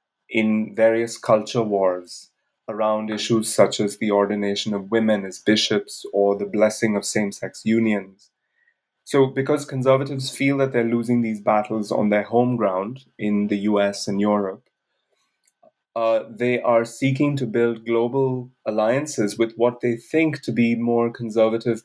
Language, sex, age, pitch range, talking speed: English, male, 30-49, 100-115 Hz, 150 wpm